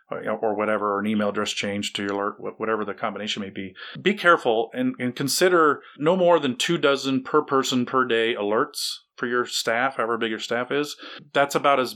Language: English